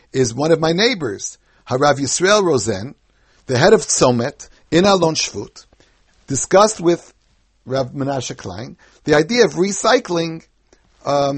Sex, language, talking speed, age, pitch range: male, English, 130 wpm, 60-79, 135-185 Hz